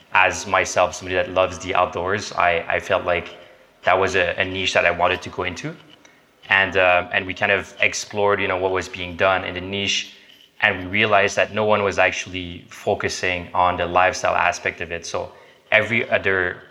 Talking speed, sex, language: 200 wpm, male, English